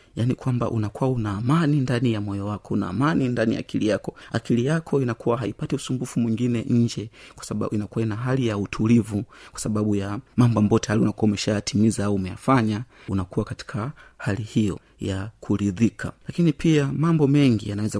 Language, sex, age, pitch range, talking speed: Swahili, male, 30-49, 105-120 Hz, 165 wpm